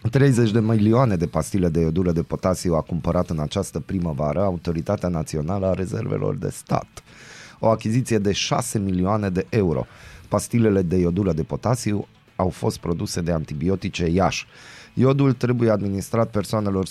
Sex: male